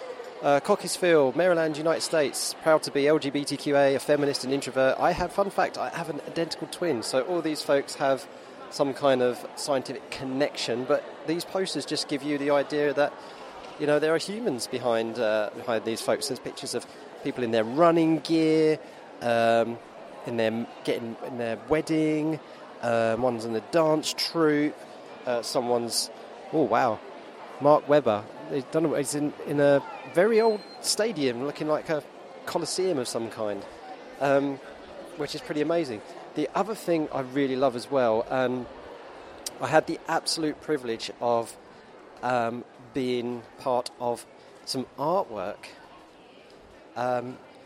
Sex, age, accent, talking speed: male, 30-49, British, 150 wpm